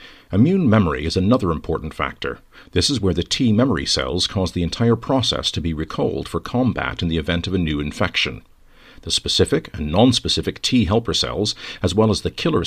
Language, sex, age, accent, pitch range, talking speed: English, male, 50-69, American, 80-110 Hz, 185 wpm